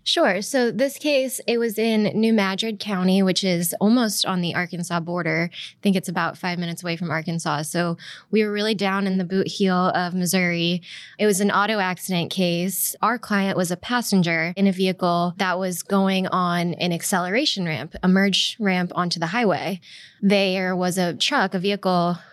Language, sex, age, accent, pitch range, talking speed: English, female, 20-39, American, 175-200 Hz, 190 wpm